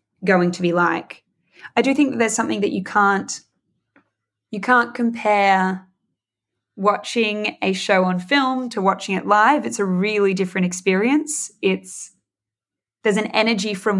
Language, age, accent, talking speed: English, 20-39, Australian, 150 wpm